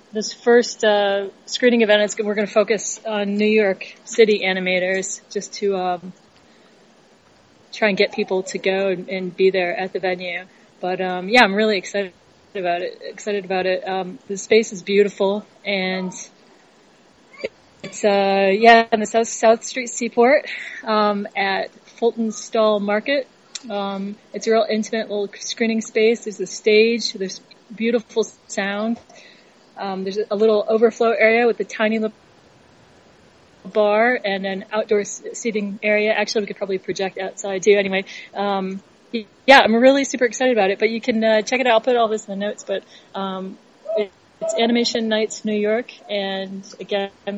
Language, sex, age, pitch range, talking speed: English, female, 30-49, 195-225 Hz, 165 wpm